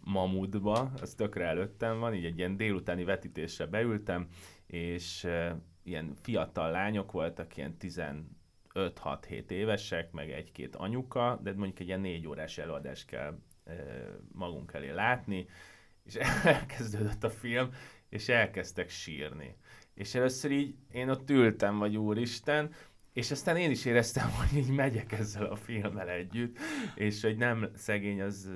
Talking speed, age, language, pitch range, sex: 140 wpm, 30-49, Hungarian, 90-115 Hz, male